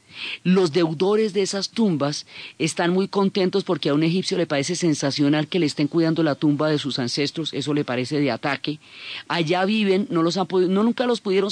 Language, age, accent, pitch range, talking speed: Spanish, 30-49, Colombian, 145-180 Hz, 190 wpm